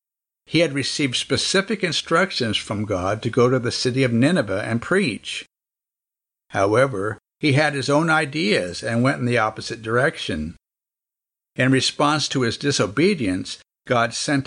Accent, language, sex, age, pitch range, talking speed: American, English, male, 60-79, 110-145 Hz, 145 wpm